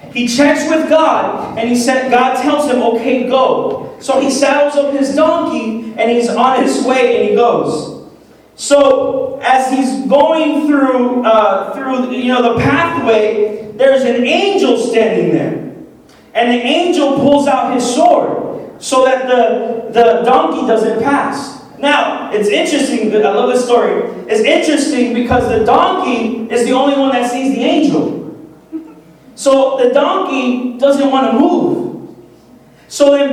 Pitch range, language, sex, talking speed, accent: 235-295 Hz, English, male, 155 wpm, American